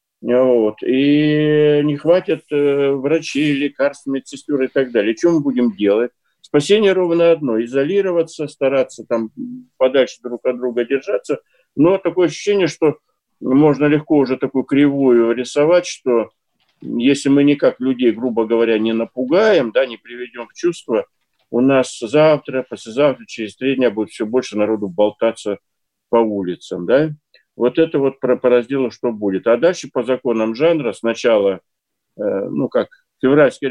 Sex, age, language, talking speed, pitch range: male, 50-69, Russian, 140 wpm, 120-150 Hz